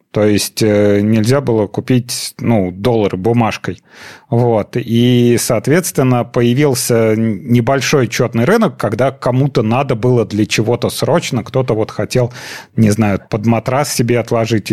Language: Russian